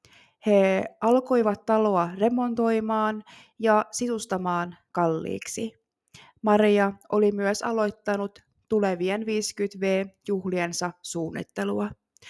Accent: native